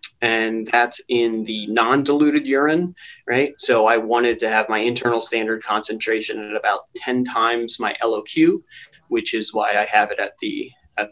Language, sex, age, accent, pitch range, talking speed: English, male, 20-39, American, 115-155 Hz, 165 wpm